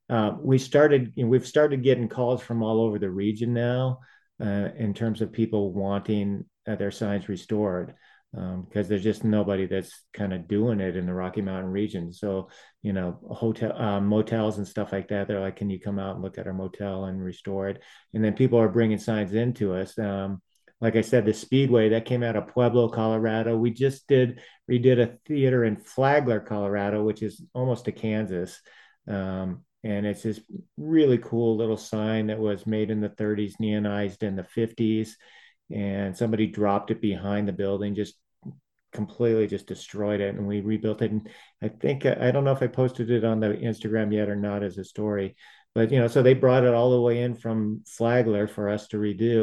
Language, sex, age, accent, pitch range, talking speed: English, male, 40-59, American, 100-120 Hz, 205 wpm